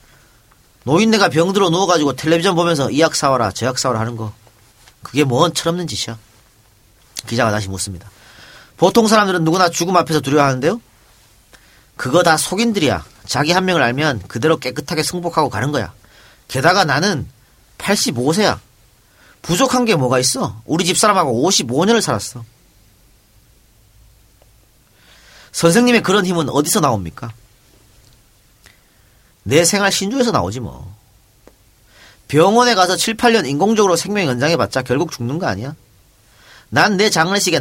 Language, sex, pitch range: Korean, male, 110-180 Hz